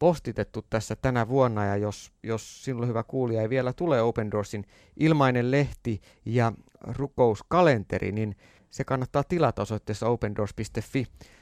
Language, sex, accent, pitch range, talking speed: Finnish, male, native, 110-140 Hz, 135 wpm